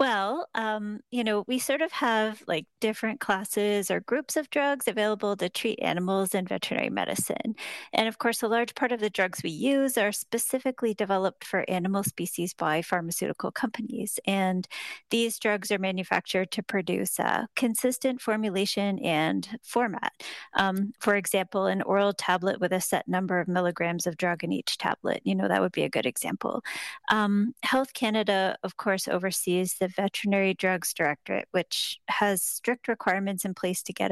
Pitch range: 190-225 Hz